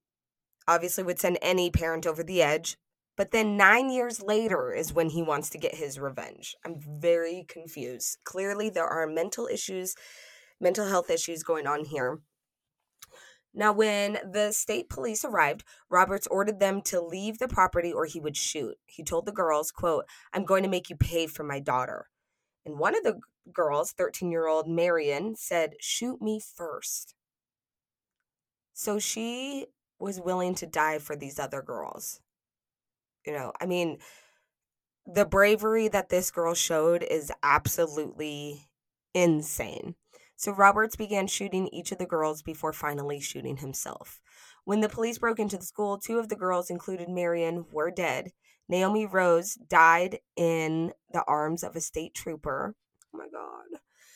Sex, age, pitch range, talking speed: female, 20-39, 165-210 Hz, 155 wpm